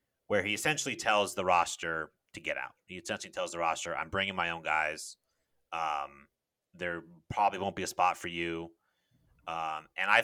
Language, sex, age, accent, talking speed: English, male, 30-49, American, 180 wpm